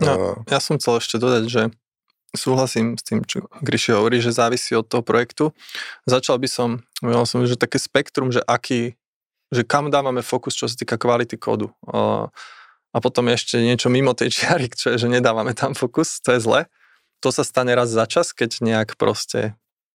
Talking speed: 185 wpm